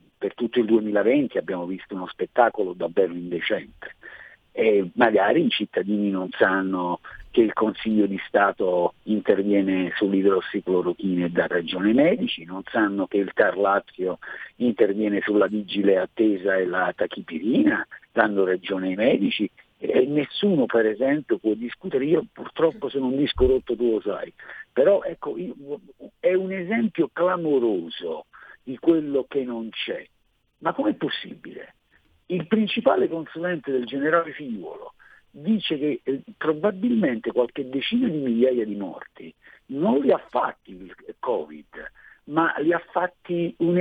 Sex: male